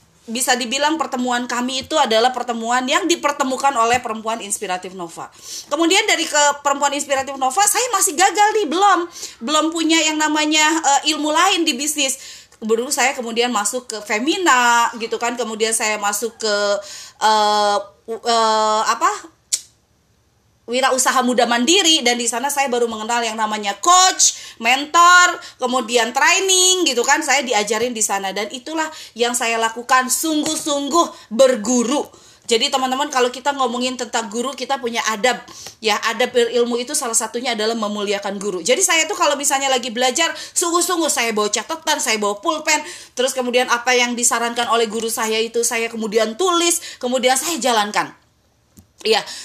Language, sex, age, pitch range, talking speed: Indonesian, female, 20-39, 230-305 Hz, 155 wpm